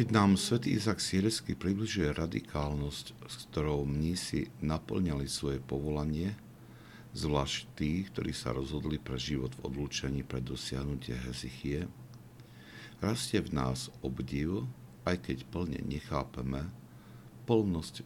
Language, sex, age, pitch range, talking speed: Slovak, male, 60-79, 65-80 Hz, 110 wpm